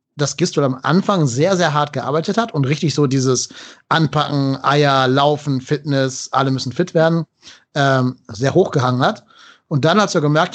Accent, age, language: German, 30-49, German